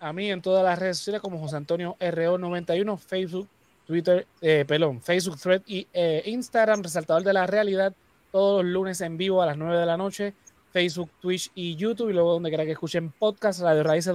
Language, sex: Spanish, male